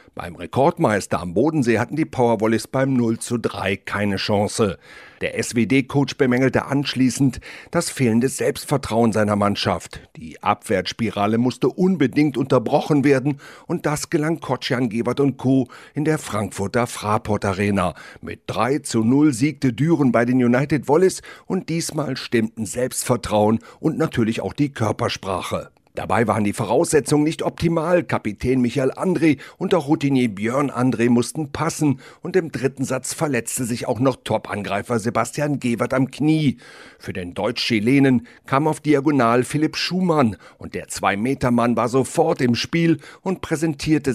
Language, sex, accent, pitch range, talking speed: German, male, German, 115-145 Hz, 145 wpm